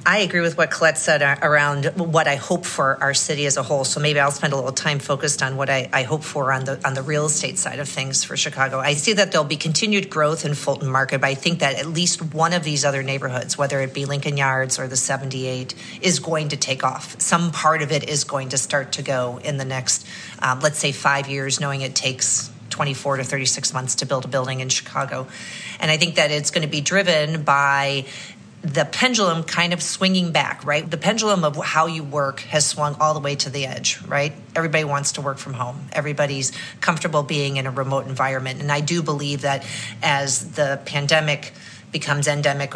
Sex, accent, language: female, American, English